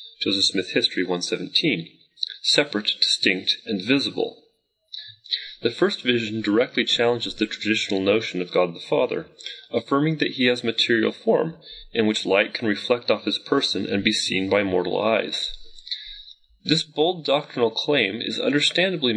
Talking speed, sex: 145 wpm, male